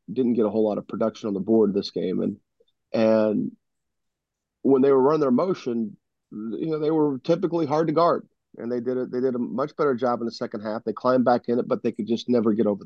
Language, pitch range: English, 110-130 Hz